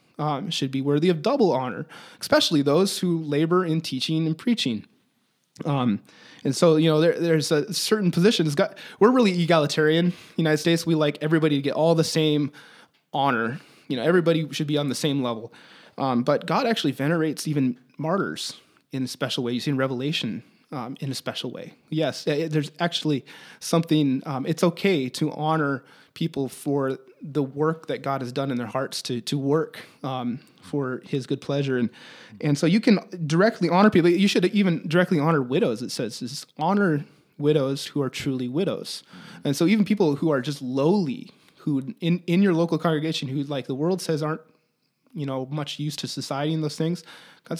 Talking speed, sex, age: 190 wpm, male, 20-39